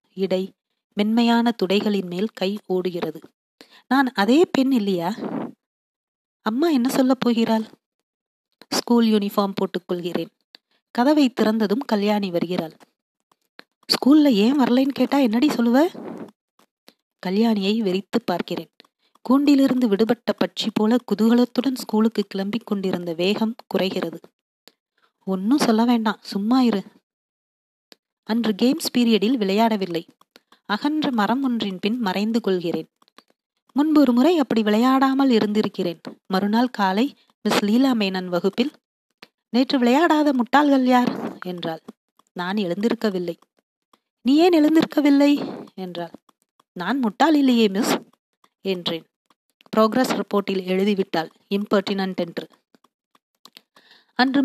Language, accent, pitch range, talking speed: Tamil, native, 195-255 Hz, 95 wpm